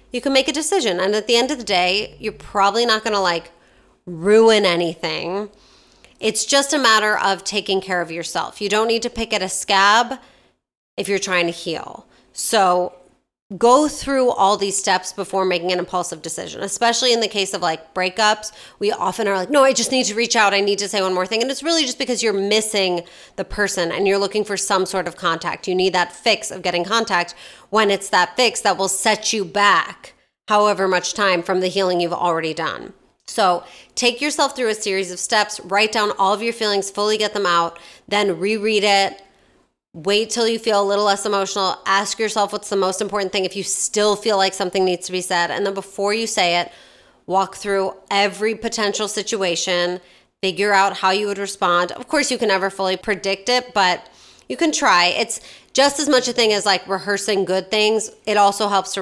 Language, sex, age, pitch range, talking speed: English, female, 30-49, 185-220 Hz, 215 wpm